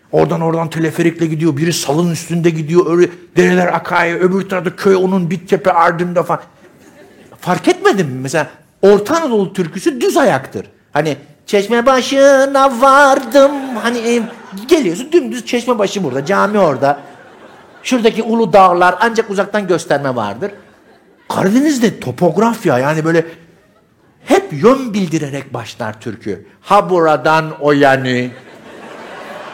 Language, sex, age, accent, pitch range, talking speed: Turkish, male, 60-79, native, 160-220 Hz, 120 wpm